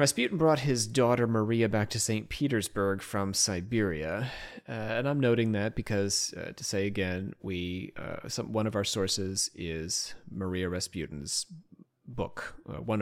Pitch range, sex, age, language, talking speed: 95-115 Hz, male, 30-49, English, 155 wpm